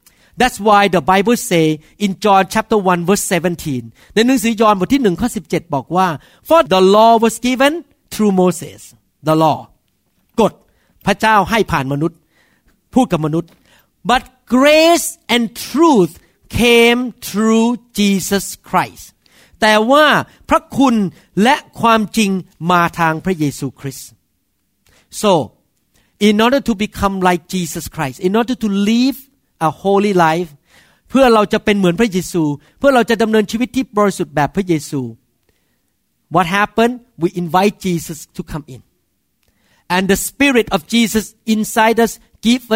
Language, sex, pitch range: Thai, male, 160-230 Hz